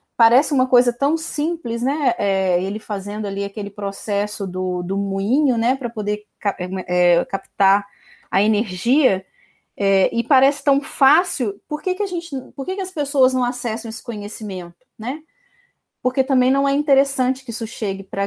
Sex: female